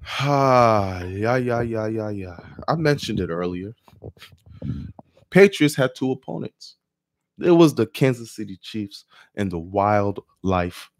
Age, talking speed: 20-39, 125 wpm